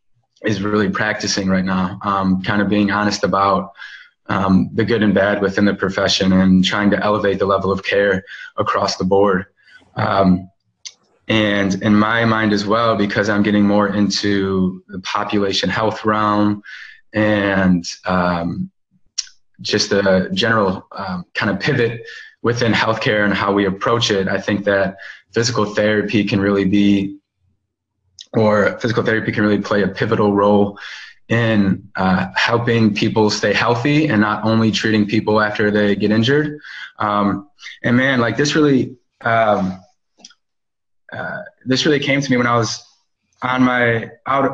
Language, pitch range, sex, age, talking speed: English, 100-115 Hz, male, 20-39, 150 wpm